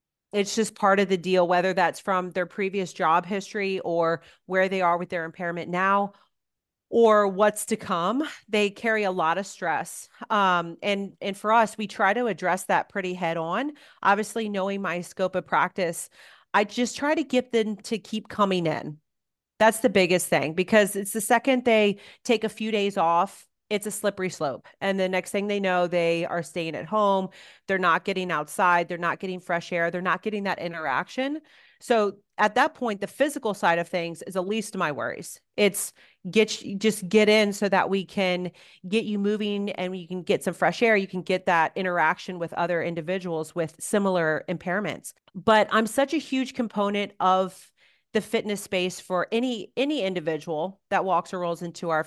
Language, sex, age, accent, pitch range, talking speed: English, female, 30-49, American, 175-215 Hz, 195 wpm